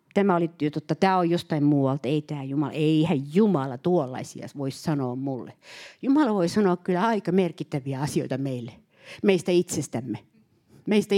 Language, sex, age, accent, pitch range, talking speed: Finnish, female, 60-79, native, 165-245 Hz, 150 wpm